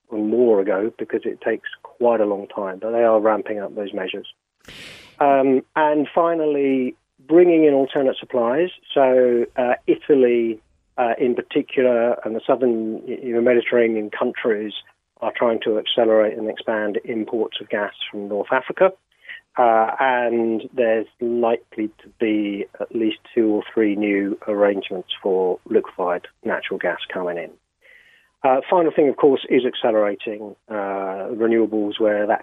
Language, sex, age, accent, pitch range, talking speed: English, male, 40-59, British, 110-160 Hz, 145 wpm